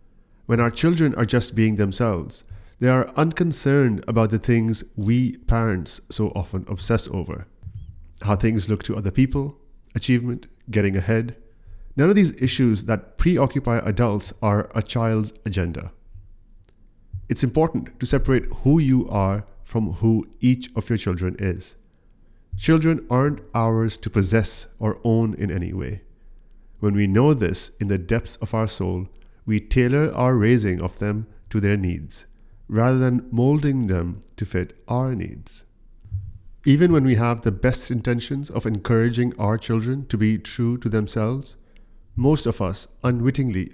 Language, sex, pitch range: English, male, 100-125 Hz